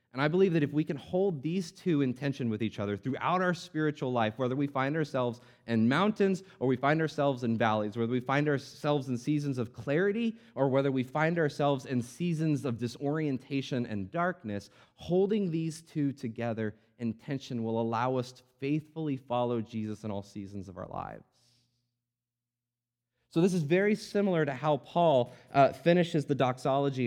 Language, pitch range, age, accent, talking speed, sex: English, 115-145 Hz, 30-49, American, 180 wpm, male